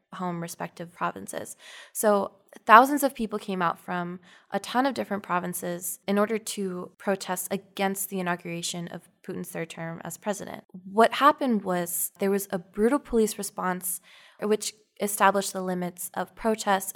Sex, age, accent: female, 20-39, American